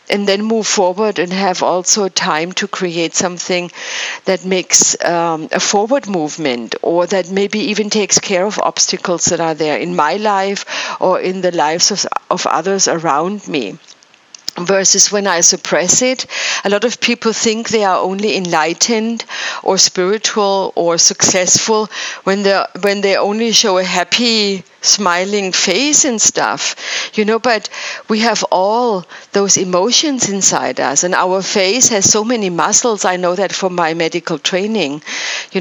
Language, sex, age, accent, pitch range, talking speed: English, female, 50-69, German, 180-210 Hz, 160 wpm